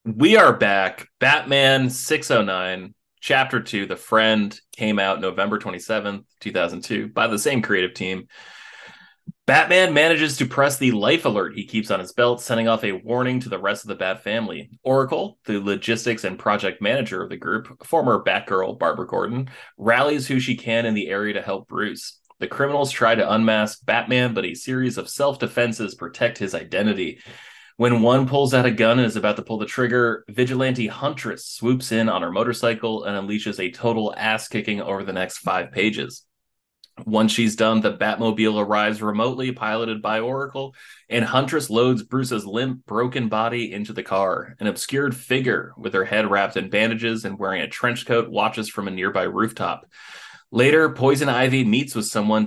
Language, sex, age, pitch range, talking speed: English, male, 20-39, 105-125 Hz, 180 wpm